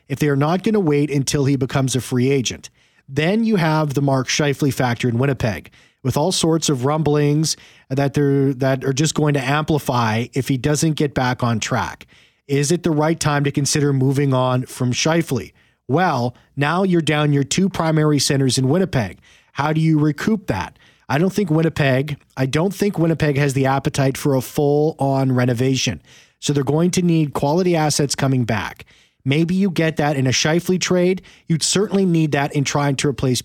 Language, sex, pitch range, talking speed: English, male, 130-155 Hz, 195 wpm